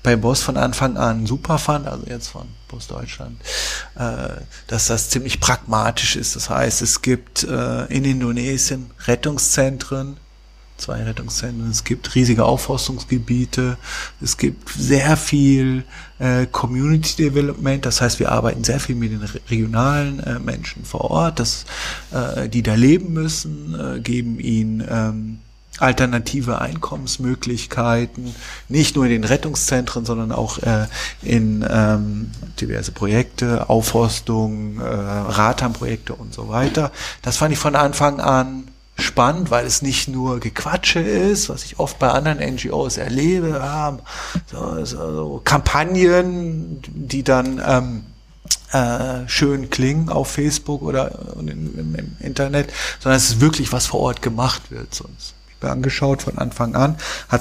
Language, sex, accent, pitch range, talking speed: German, male, German, 115-140 Hz, 130 wpm